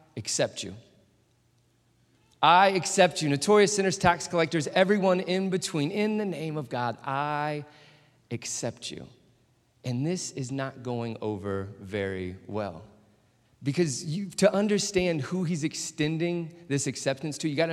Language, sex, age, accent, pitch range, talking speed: English, male, 30-49, American, 120-165 Hz, 140 wpm